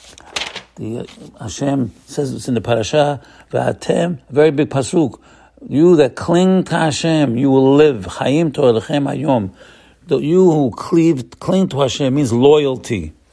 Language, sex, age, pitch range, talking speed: English, male, 50-69, 125-155 Hz, 115 wpm